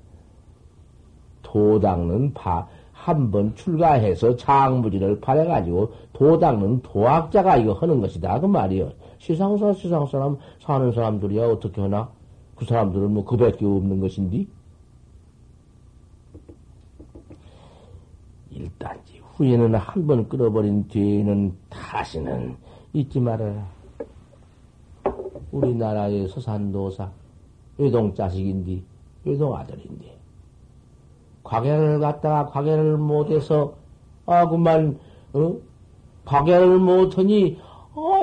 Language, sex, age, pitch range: Korean, male, 50-69, 100-160 Hz